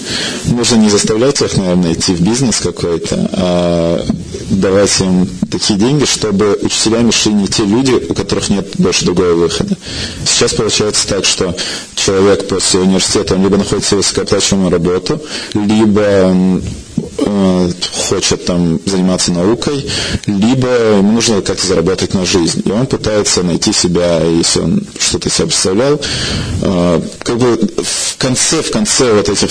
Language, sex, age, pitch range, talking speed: Russian, male, 30-49, 90-110 Hz, 140 wpm